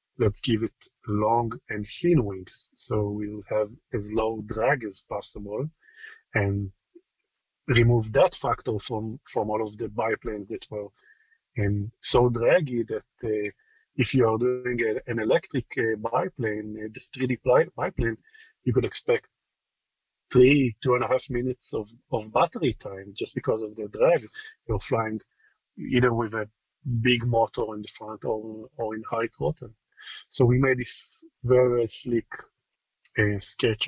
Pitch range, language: 110-130 Hz, English